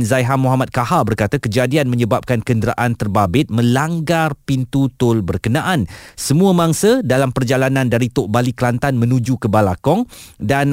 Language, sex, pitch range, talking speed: Malay, male, 115-150 Hz, 135 wpm